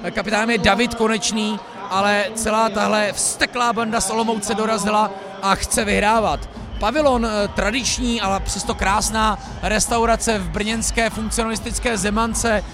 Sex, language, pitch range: male, Czech, 210-235 Hz